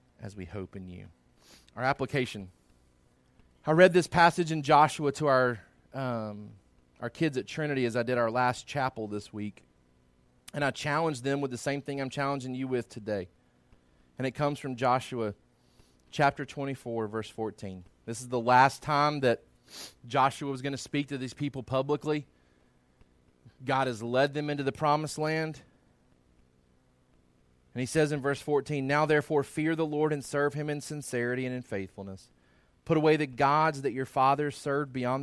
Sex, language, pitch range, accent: male, English, 110-150 Hz, American